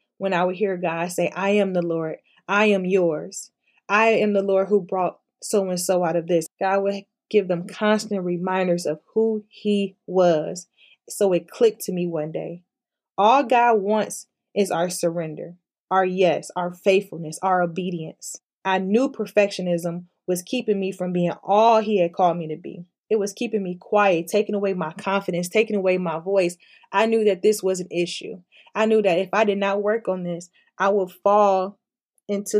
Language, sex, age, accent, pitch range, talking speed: English, female, 20-39, American, 180-210 Hz, 185 wpm